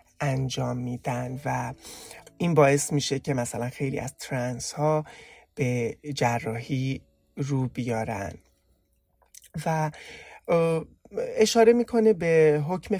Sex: male